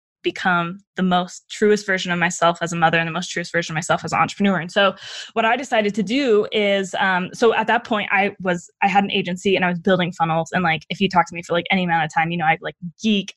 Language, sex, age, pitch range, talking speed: English, female, 10-29, 175-205 Hz, 280 wpm